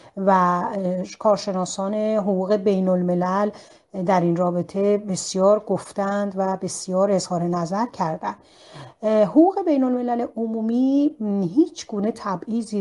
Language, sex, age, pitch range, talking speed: Persian, female, 40-59, 185-240 Hz, 105 wpm